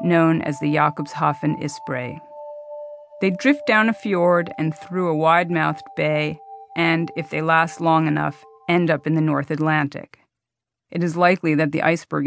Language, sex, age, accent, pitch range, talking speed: English, female, 40-59, American, 150-175 Hz, 160 wpm